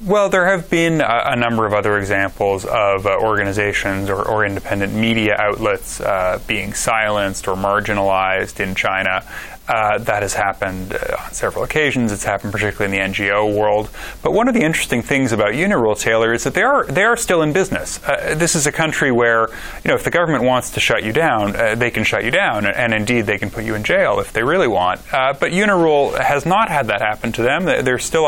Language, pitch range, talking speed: English, 105-125 Hz, 210 wpm